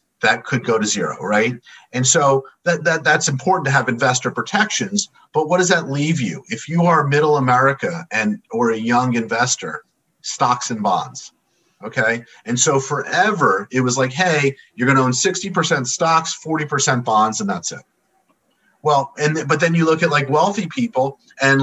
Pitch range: 125-165 Hz